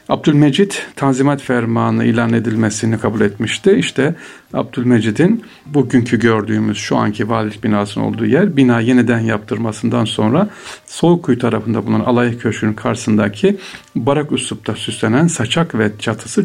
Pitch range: 110-130 Hz